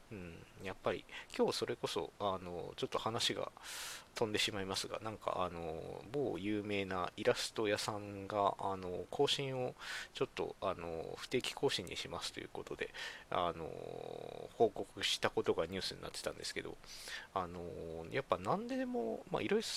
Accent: native